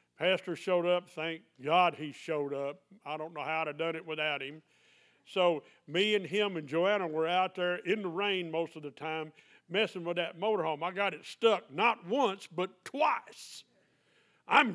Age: 50-69